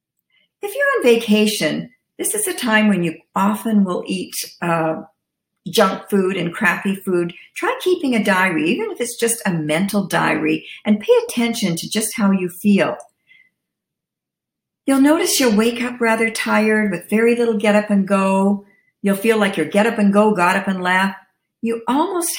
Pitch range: 195-245 Hz